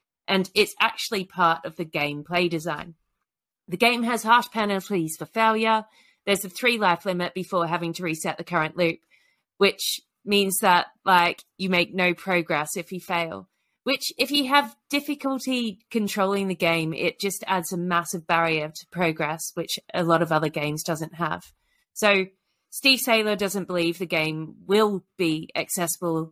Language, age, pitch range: English, 30-49, 165-205 Hz